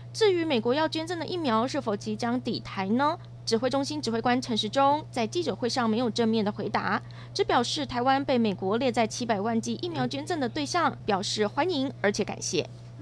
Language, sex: Chinese, female